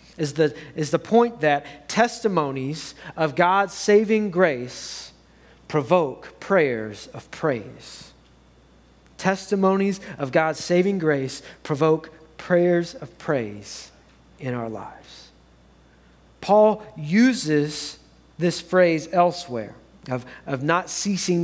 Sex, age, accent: male, 40-59, American